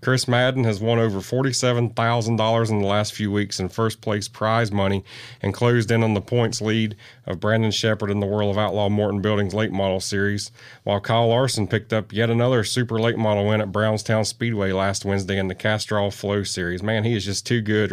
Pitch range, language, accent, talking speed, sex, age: 105-120 Hz, English, American, 210 wpm, male, 30-49